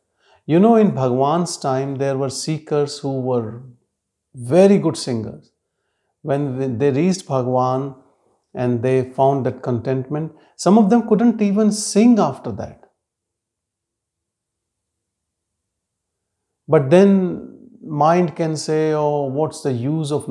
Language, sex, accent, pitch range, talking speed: English, male, Indian, 125-165 Hz, 120 wpm